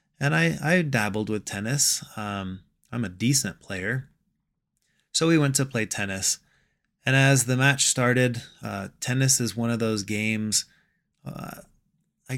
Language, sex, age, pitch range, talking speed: English, male, 20-39, 110-140 Hz, 150 wpm